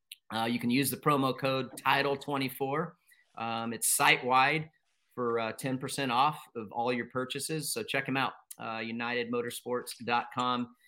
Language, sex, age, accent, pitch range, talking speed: English, male, 40-59, American, 105-135 Hz, 150 wpm